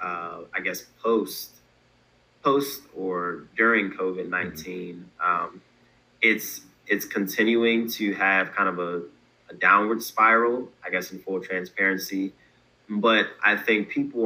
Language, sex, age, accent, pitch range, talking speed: English, male, 20-39, American, 90-105 Hz, 125 wpm